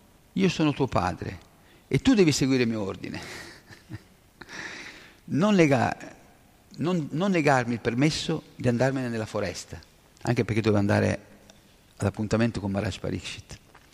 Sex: male